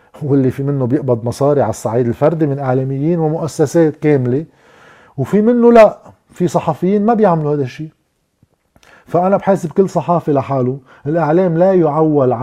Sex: male